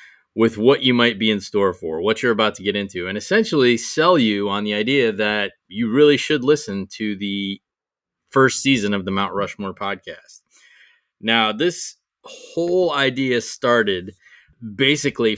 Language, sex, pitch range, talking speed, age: English, male, 100-130 Hz, 160 wpm, 20-39